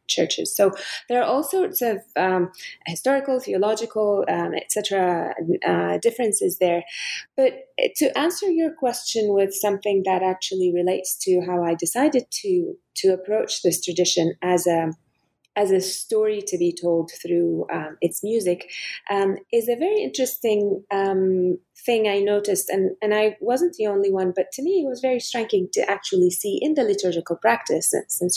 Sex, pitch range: female, 180-245 Hz